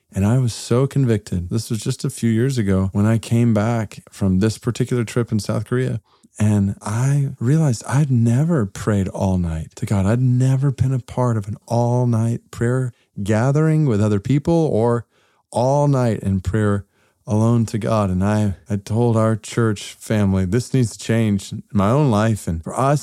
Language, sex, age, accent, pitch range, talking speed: English, male, 40-59, American, 95-120 Hz, 185 wpm